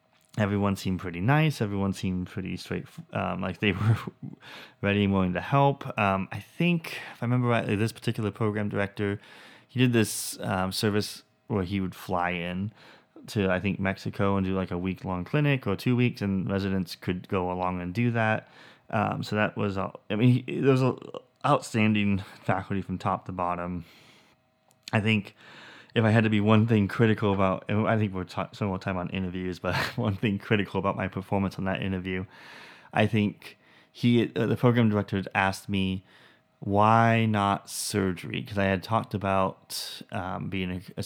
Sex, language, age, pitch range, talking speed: male, English, 20-39, 95-110 Hz, 185 wpm